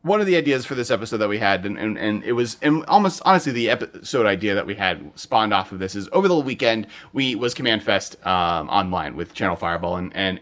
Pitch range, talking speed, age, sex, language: 100-135 Hz, 250 wpm, 30-49, male, English